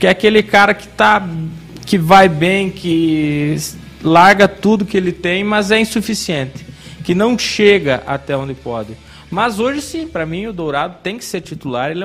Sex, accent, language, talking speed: male, Brazilian, Portuguese, 180 wpm